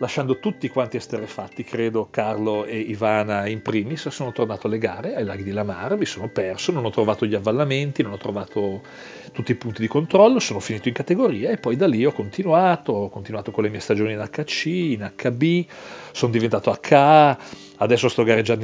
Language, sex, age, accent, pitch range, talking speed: Italian, male, 40-59, native, 100-130 Hz, 195 wpm